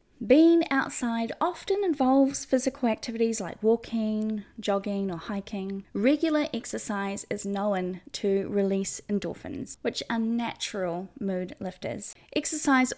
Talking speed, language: 110 wpm, English